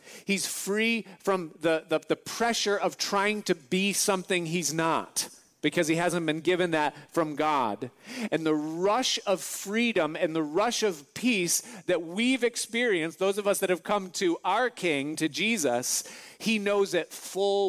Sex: male